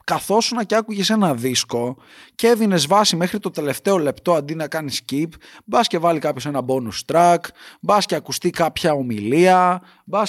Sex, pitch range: male, 110-160 Hz